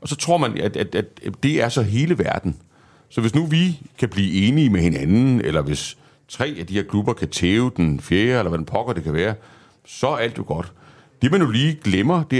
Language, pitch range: Danish, 95-145 Hz